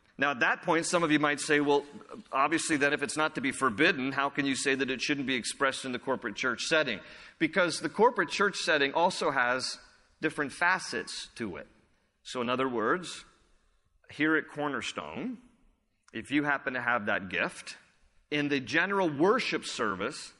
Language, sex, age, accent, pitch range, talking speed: English, male, 40-59, American, 135-185 Hz, 180 wpm